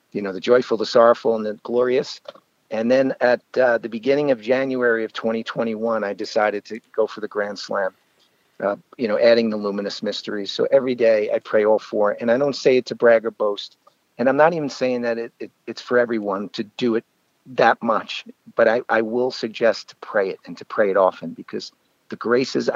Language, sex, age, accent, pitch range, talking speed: English, male, 50-69, American, 110-125 Hz, 210 wpm